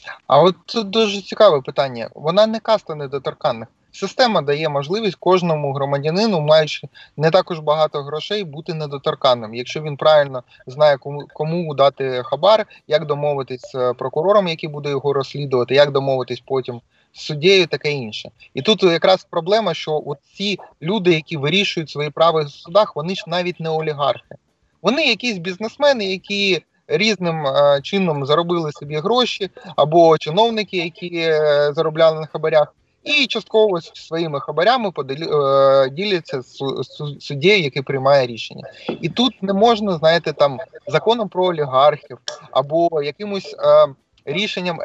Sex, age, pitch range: male, 30-49, 145-190 Hz